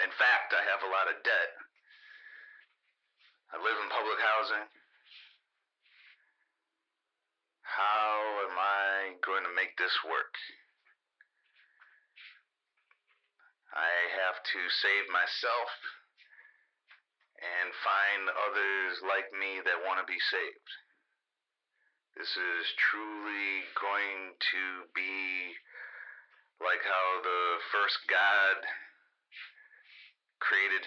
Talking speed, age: 95 wpm, 40-59